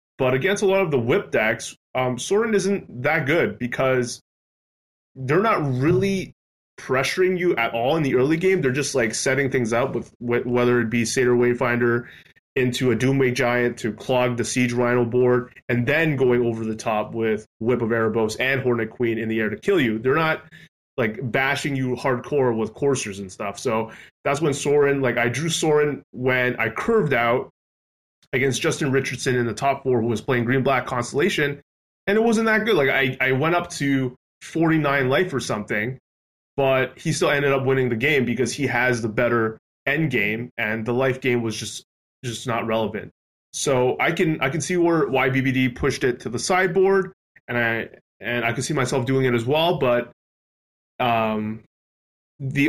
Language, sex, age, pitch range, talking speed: English, male, 20-39, 120-145 Hz, 190 wpm